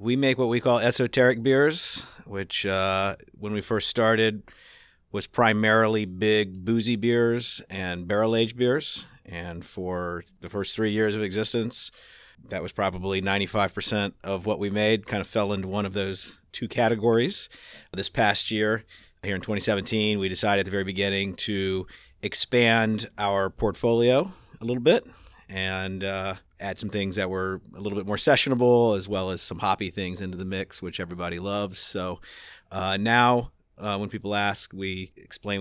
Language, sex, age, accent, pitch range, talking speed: English, male, 50-69, American, 95-115 Hz, 165 wpm